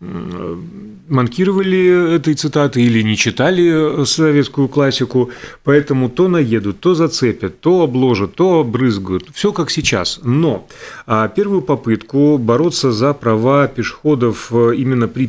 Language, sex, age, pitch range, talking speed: Russian, male, 30-49, 115-160 Hz, 115 wpm